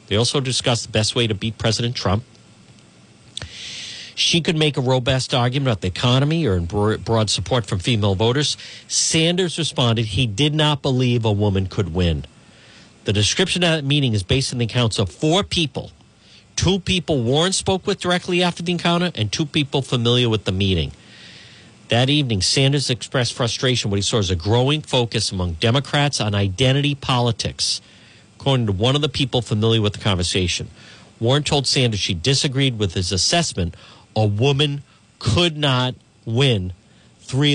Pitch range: 105-140 Hz